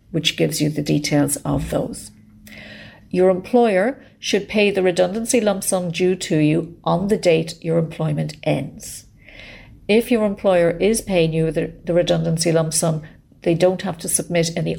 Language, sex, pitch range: English, female, 150-180 Hz